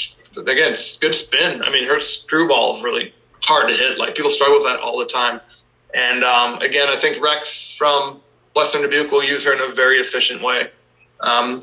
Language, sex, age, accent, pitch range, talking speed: English, male, 20-39, American, 135-185 Hz, 210 wpm